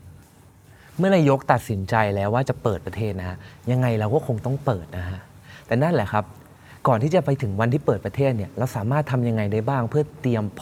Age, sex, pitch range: 20-39, male, 100-135 Hz